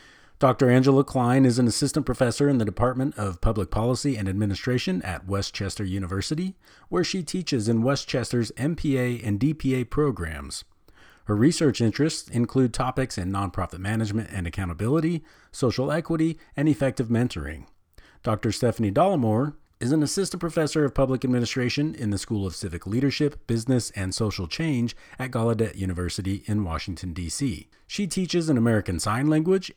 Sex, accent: male, American